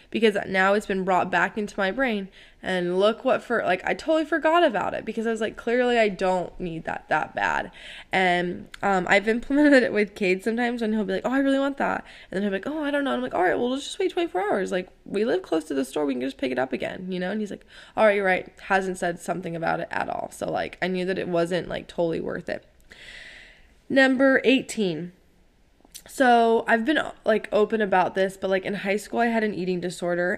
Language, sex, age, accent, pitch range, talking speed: English, female, 10-29, American, 180-230 Hz, 250 wpm